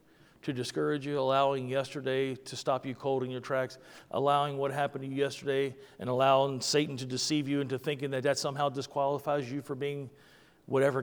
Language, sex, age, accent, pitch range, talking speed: English, male, 50-69, American, 130-155 Hz, 185 wpm